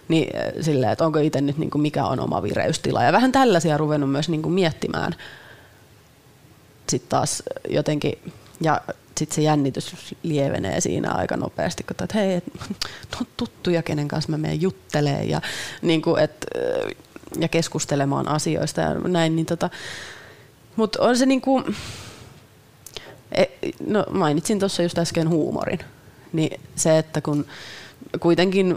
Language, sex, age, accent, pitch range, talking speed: Finnish, female, 30-49, native, 145-170 Hz, 135 wpm